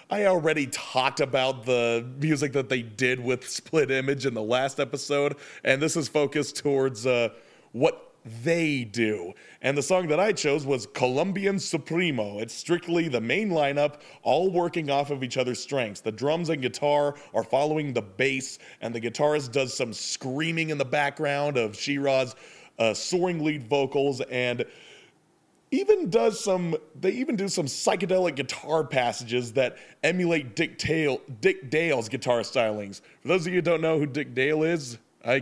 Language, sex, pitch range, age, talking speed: English, male, 120-155 Hz, 30-49, 170 wpm